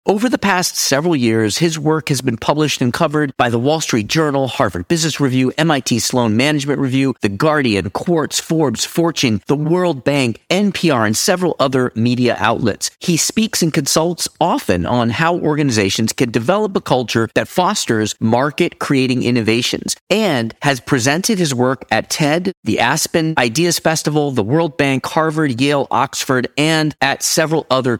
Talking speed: 165 wpm